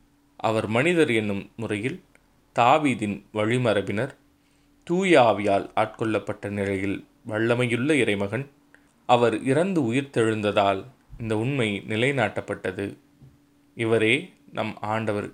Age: 20-39